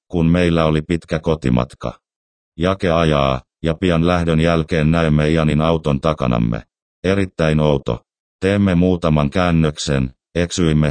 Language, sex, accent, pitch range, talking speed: Finnish, male, native, 75-85 Hz, 115 wpm